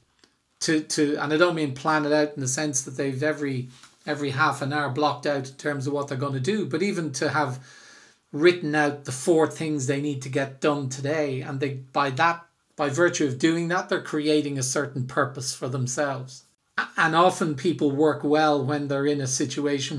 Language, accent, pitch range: English, Irish, 135-155 Hz